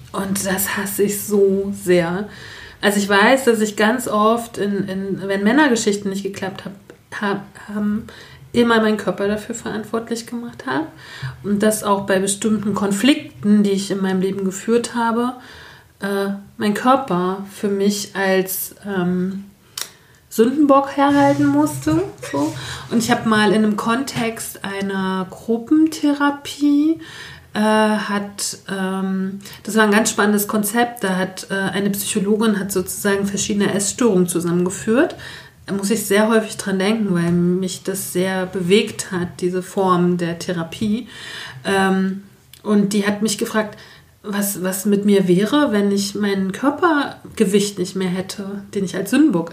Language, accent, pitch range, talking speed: German, German, 190-220 Hz, 140 wpm